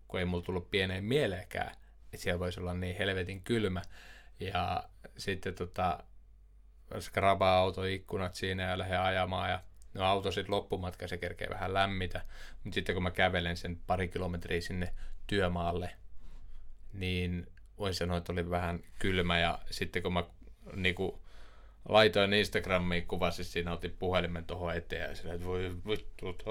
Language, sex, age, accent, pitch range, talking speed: Finnish, male, 20-39, native, 90-100 Hz, 145 wpm